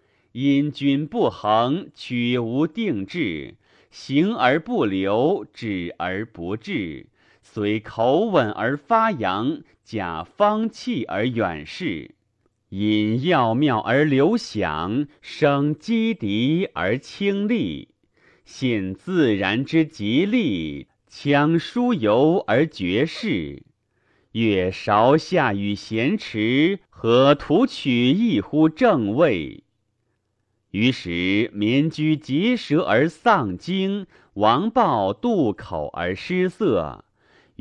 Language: Chinese